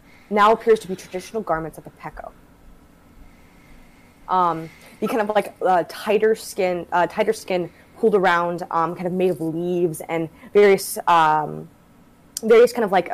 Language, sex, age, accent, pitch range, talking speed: English, female, 20-39, American, 165-215 Hz, 160 wpm